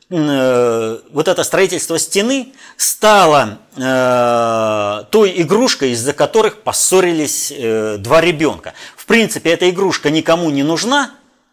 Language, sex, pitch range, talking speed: Russian, male, 145-205 Hz, 100 wpm